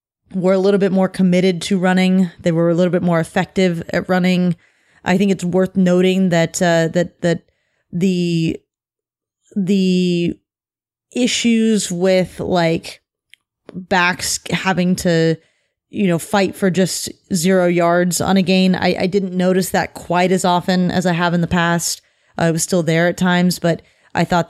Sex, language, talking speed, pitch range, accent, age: female, English, 165 wpm, 175-200 Hz, American, 30-49